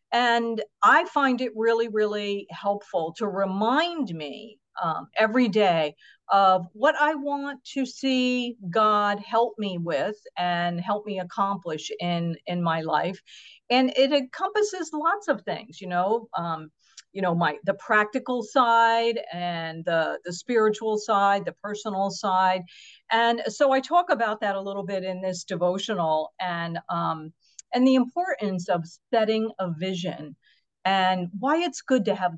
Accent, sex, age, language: American, female, 50-69, English